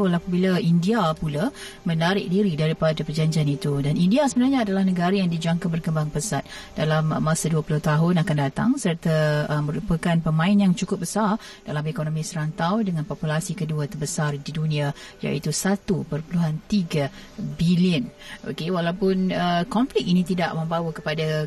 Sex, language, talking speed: female, Malay, 140 wpm